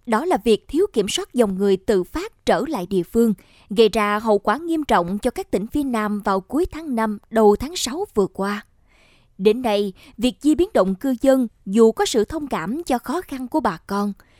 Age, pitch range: 20-39, 205-270 Hz